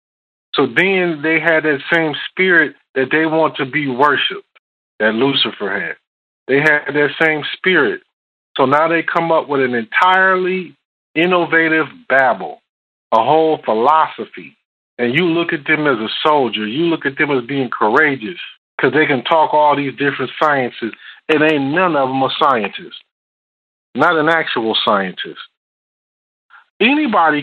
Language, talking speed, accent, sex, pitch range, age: English, 150 wpm, American, male, 135-175 Hz, 50-69